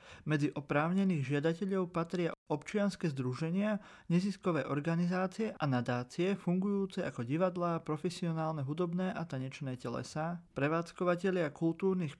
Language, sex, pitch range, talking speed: Slovak, male, 145-185 Hz, 100 wpm